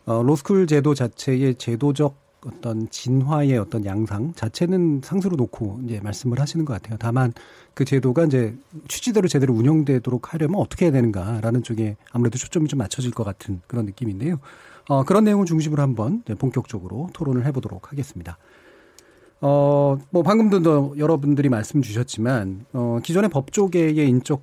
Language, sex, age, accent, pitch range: Korean, male, 40-59, native, 115-155 Hz